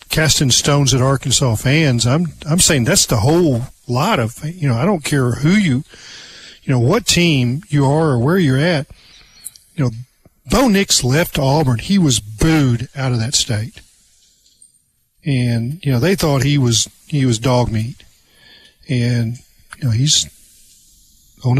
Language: English